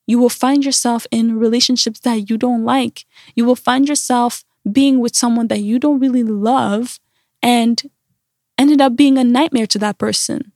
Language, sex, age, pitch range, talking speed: English, female, 10-29, 215-265 Hz, 175 wpm